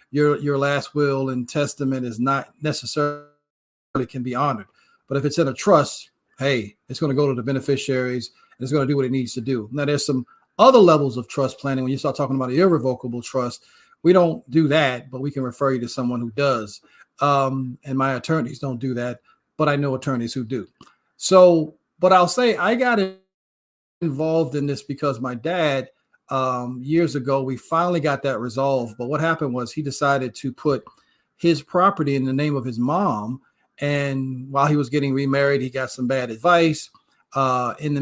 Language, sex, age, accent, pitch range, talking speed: English, male, 40-59, American, 130-155 Hz, 200 wpm